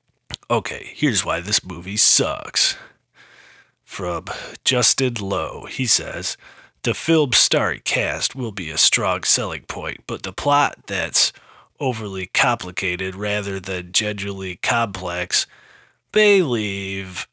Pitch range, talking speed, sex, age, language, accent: 95-120 Hz, 115 wpm, male, 30-49, English, American